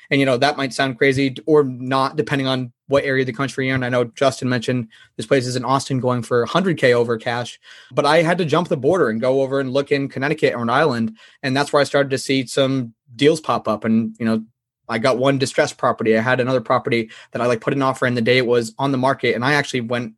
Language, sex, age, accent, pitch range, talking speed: English, male, 20-39, American, 120-140 Hz, 270 wpm